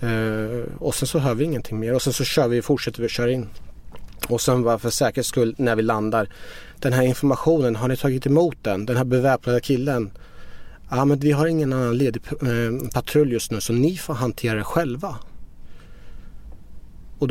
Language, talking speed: Swedish, 200 wpm